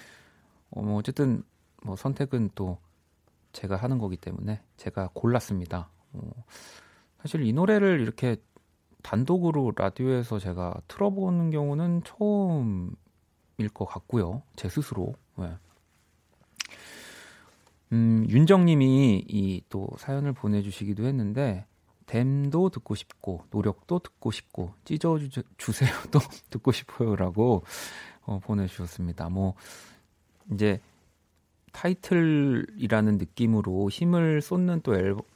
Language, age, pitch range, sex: Korean, 40-59, 95-130 Hz, male